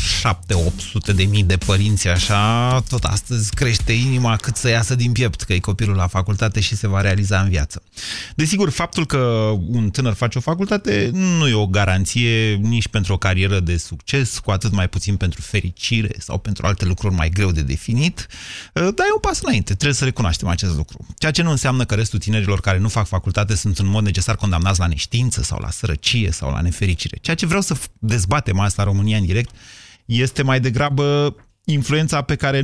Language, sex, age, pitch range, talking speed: Romanian, male, 30-49, 95-125 Hz, 195 wpm